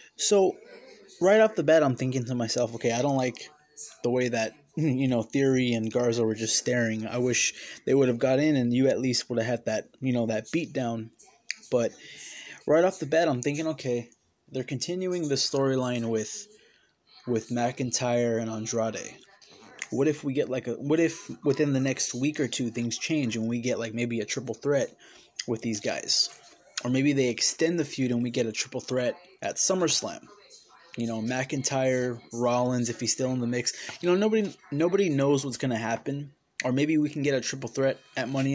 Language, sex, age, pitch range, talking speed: English, male, 20-39, 120-140 Hz, 205 wpm